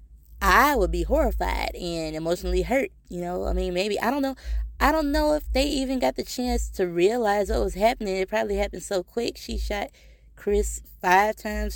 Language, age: English, 20-39